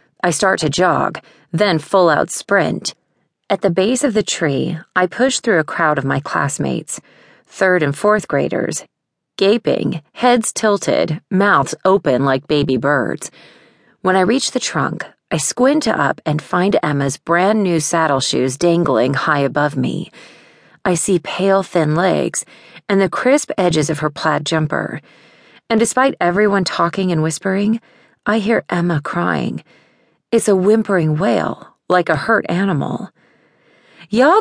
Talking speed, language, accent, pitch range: 145 wpm, English, American, 155-210 Hz